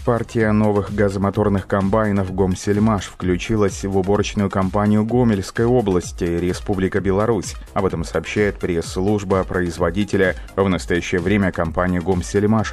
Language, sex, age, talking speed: Russian, male, 30-49, 115 wpm